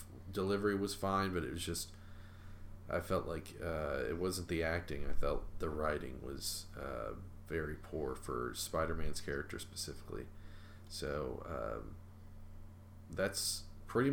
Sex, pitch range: male, 85-100 Hz